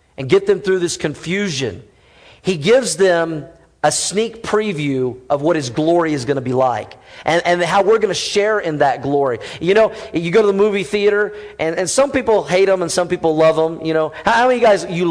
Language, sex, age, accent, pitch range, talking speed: English, male, 40-59, American, 160-215 Hz, 230 wpm